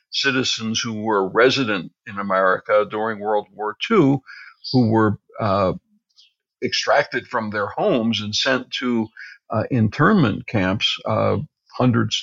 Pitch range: 110-130 Hz